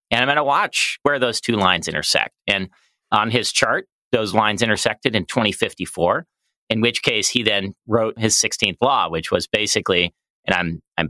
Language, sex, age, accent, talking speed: English, male, 40-59, American, 185 wpm